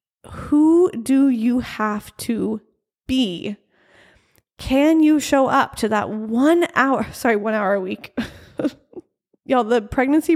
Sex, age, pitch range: female, 20-39, 220-295 Hz